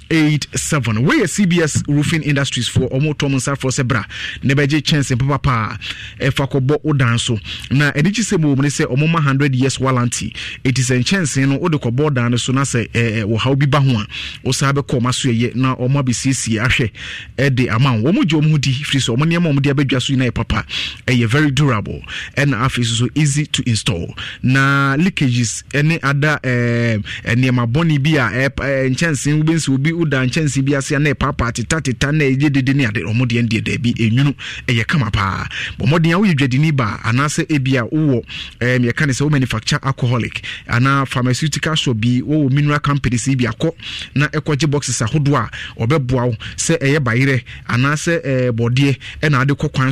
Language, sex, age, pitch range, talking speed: English, male, 30-49, 120-145 Hz, 190 wpm